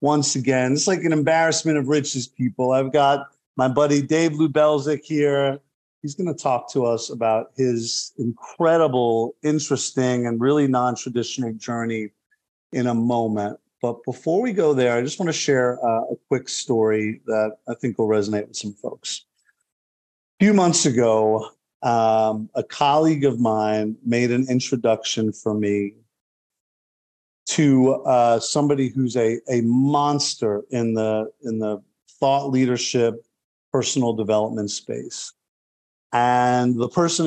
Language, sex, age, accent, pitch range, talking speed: English, male, 50-69, American, 110-135 Hz, 140 wpm